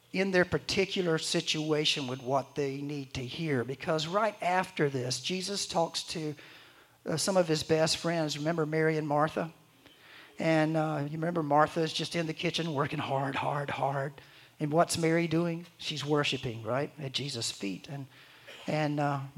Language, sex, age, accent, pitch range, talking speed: English, male, 50-69, American, 150-190 Hz, 165 wpm